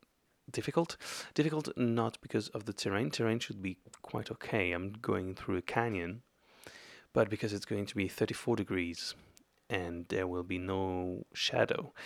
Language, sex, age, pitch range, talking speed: English, male, 30-49, 95-115 Hz, 155 wpm